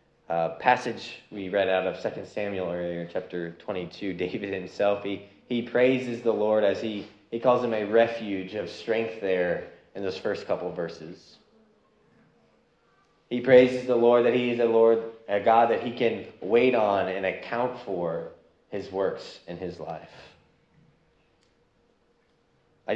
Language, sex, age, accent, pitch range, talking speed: English, male, 20-39, American, 100-120 Hz, 160 wpm